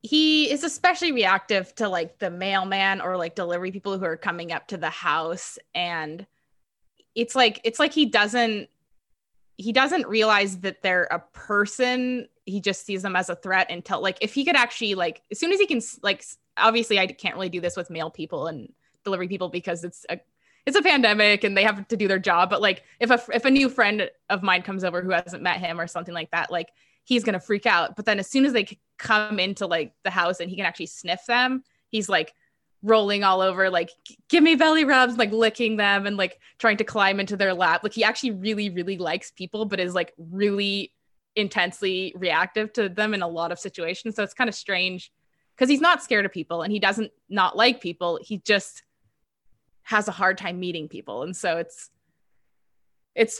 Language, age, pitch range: English, 20-39, 180-230 Hz